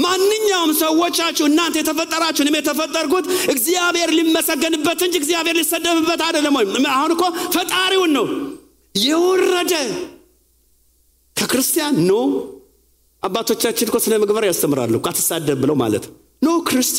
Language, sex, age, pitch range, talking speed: English, male, 50-69, 220-320 Hz, 60 wpm